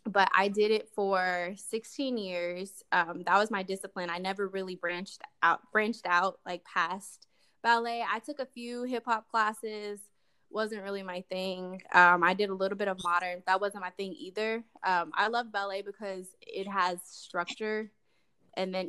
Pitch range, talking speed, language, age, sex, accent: 180-215 Hz, 180 wpm, English, 10-29, female, American